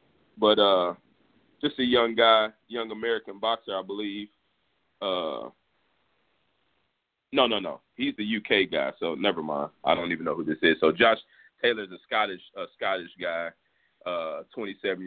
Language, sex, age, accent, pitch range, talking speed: English, male, 30-49, American, 90-115 Hz, 155 wpm